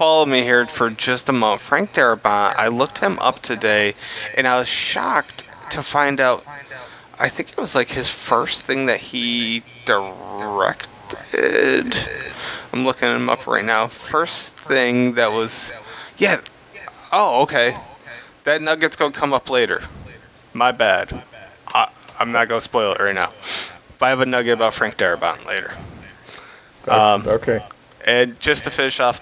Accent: American